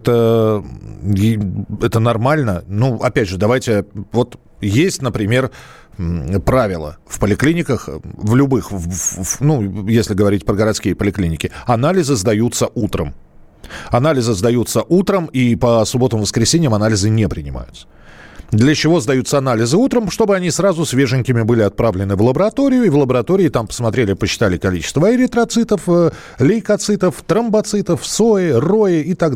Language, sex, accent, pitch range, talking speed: Russian, male, native, 105-170 Hz, 130 wpm